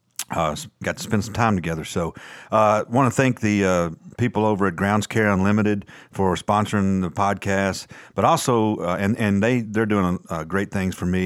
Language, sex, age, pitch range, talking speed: English, male, 40-59, 85-100 Hz, 205 wpm